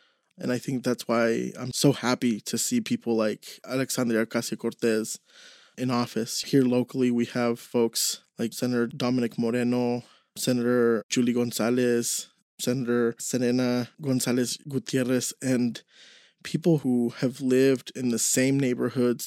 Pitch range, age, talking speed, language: 120-135 Hz, 20-39, 125 wpm, English